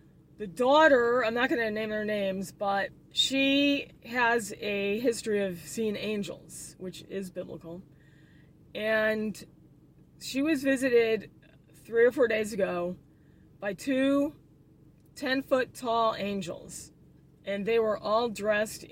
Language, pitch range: English, 175-235 Hz